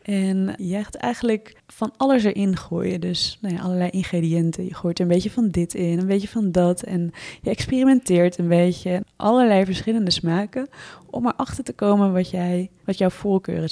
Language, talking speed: Dutch, 185 wpm